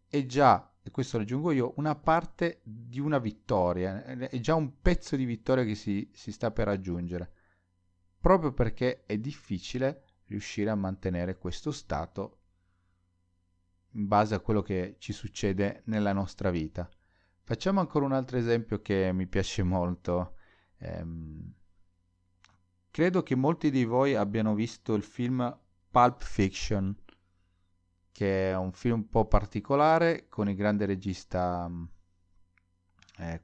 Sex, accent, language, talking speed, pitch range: male, native, Italian, 135 wpm, 90-115 Hz